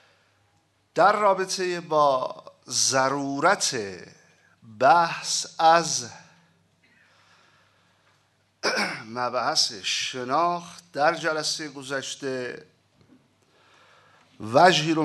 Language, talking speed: Persian, 50 wpm